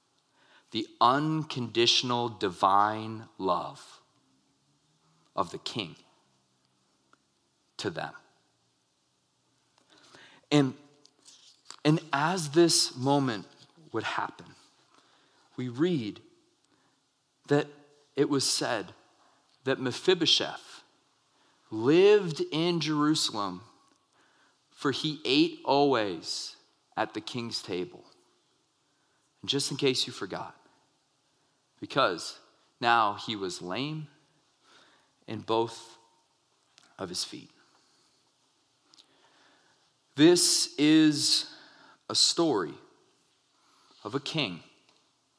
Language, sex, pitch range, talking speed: English, male, 105-155 Hz, 75 wpm